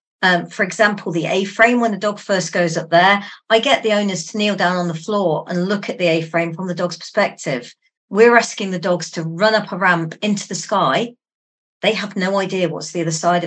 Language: English